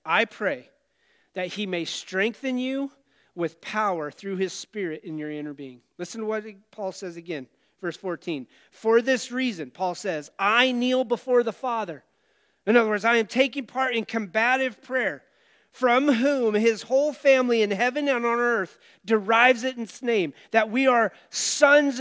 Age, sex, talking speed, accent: 30-49, male, 170 wpm, American